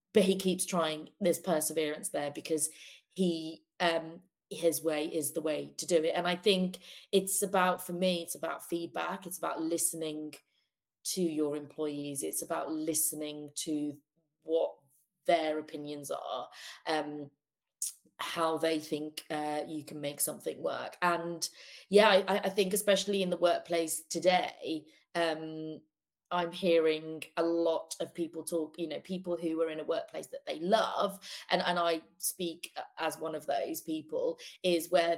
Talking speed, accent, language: 155 wpm, British, English